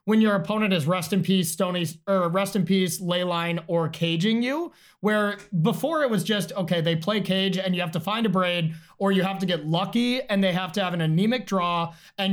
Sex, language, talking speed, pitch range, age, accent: male, English, 230 wpm, 170-210 Hz, 20-39, American